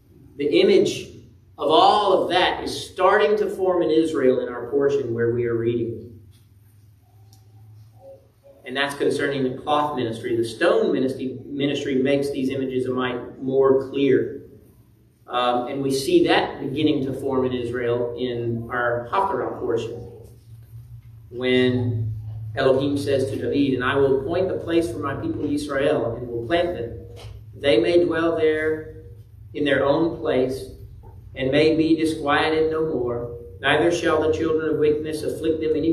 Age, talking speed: 40-59, 155 wpm